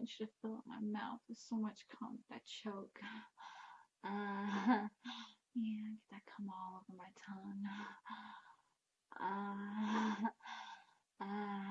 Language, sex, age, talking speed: English, female, 20-39, 125 wpm